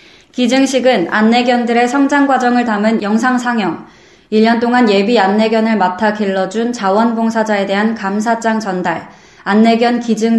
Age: 20-39